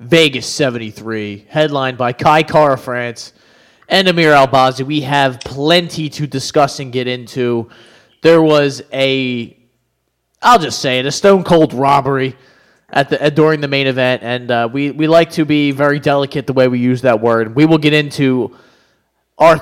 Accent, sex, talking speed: American, male, 170 wpm